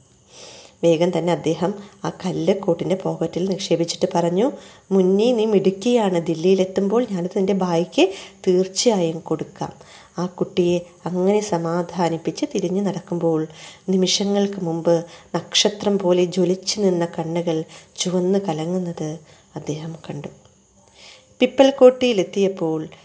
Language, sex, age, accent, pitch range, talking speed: Malayalam, female, 20-39, native, 165-190 Hz, 90 wpm